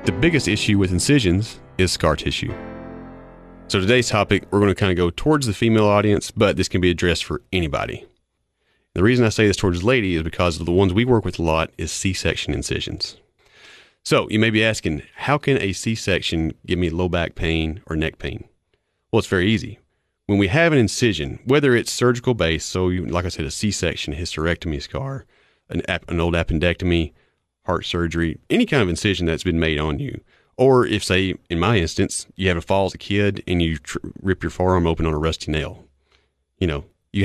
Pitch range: 85-110 Hz